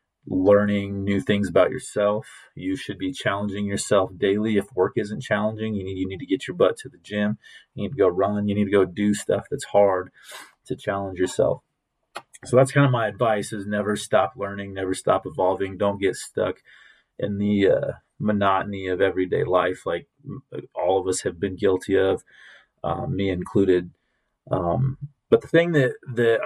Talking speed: 185 wpm